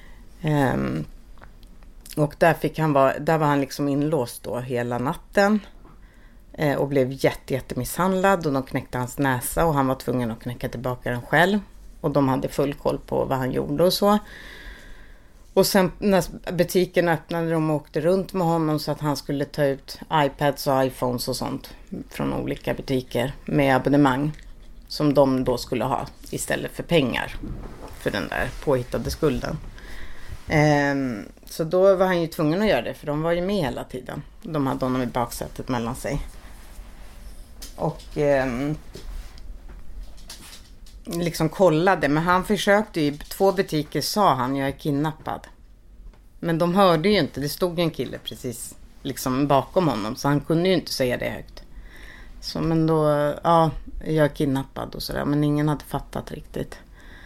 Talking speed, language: 165 wpm, Swedish